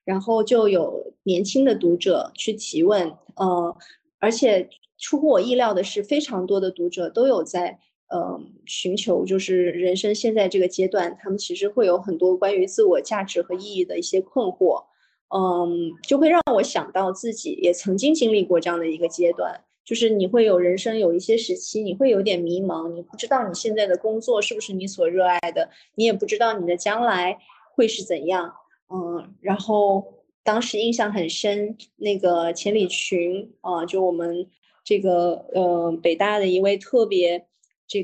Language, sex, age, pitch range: Chinese, female, 20-39, 180-225 Hz